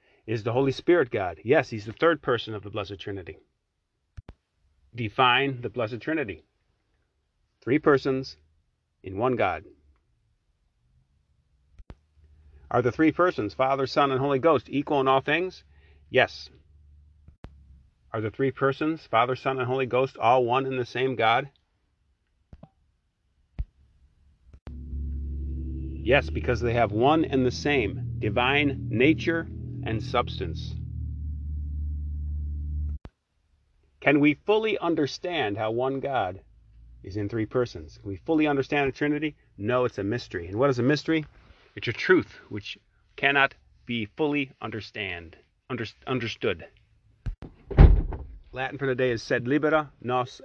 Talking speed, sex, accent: 130 wpm, male, American